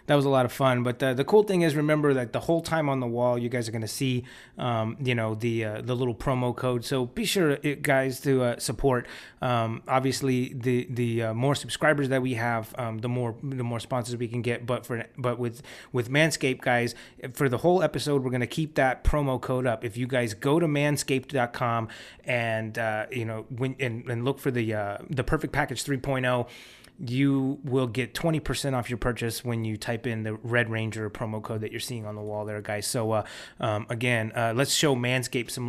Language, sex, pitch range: English, male, 115-140 Hz